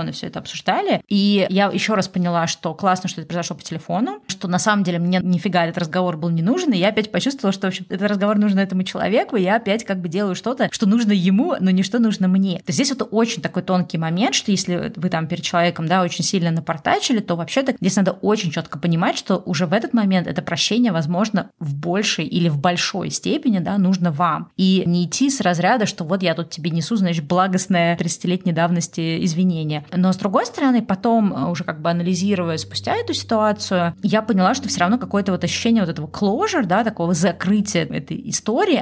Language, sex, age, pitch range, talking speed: Russian, female, 20-39, 170-205 Hz, 215 wpm